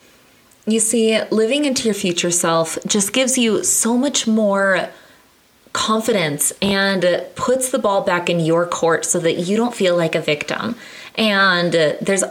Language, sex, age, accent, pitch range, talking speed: English, female, 20-39, American, 165-205 Hz, 155 wpm